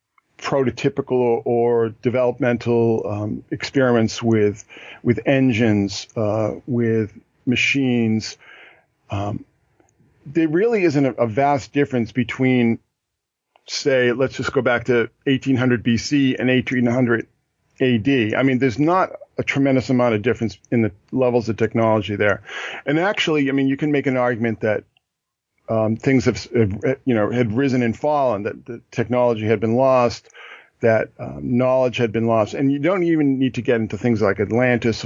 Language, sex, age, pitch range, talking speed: English, male, 40-59, 115-135 Hz, 150 wpm